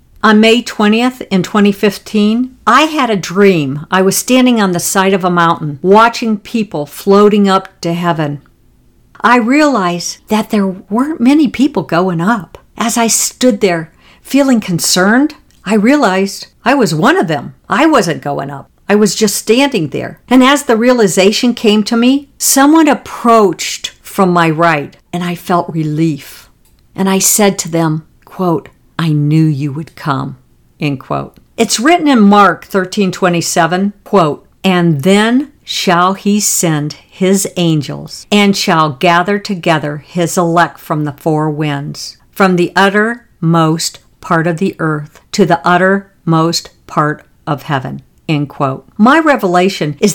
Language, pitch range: English, 170-225 Hz